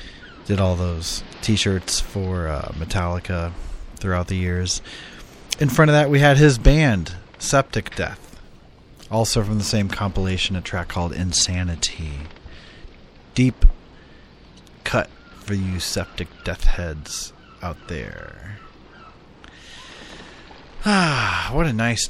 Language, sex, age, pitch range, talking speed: English, male, 30-49, 85-115 Hz, 115 wpm